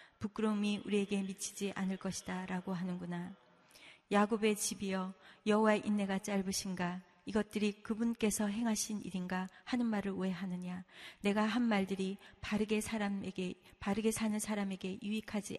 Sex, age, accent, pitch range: female, 30-49, native, 185-210 Hz